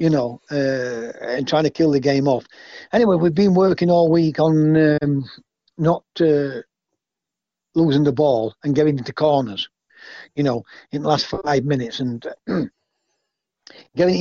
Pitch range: 140-175 Hz